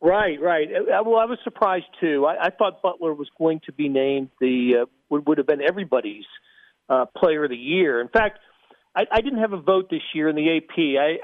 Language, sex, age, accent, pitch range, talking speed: English, male, 40-59, American, 145-210 Hz, 220 wpm